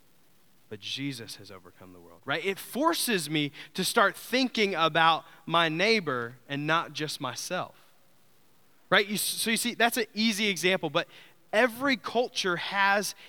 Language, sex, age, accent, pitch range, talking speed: English, male, 20-39, American, 160-220 Hz, 145 wpm